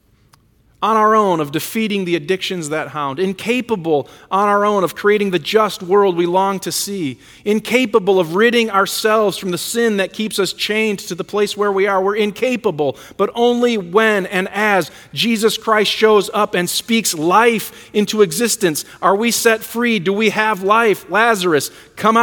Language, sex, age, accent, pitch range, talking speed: English, male, 40-59, American, 185-220 Hz, 175 wpm